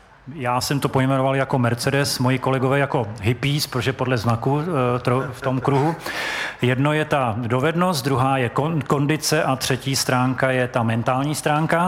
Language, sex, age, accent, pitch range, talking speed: Czech, male, 40-59, native, 125-150 Hz, 155 wpm